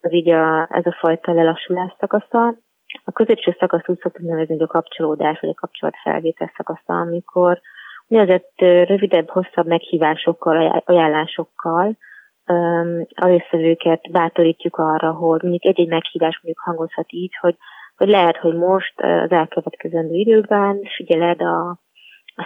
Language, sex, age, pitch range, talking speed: Hungarian, female, 20-39, 165-200 Hz, 130 wpm